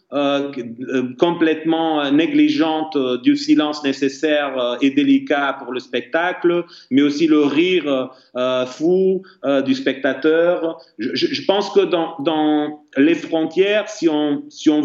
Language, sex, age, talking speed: French, male, 40-59, 135 wpm